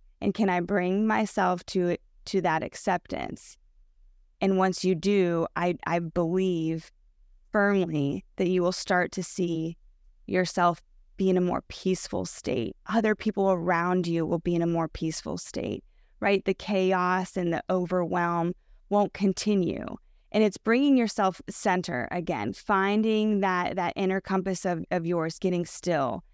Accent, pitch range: American, 170-190 Hz